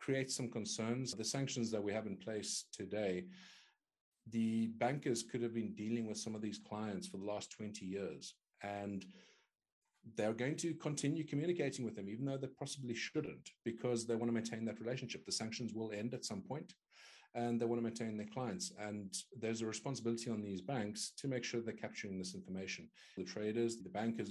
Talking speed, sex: 195 wpm, male